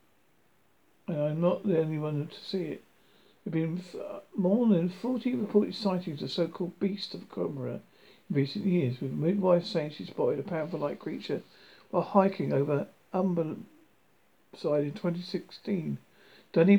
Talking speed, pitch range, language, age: 155 wpm, 150-195 Hz, English, 50-69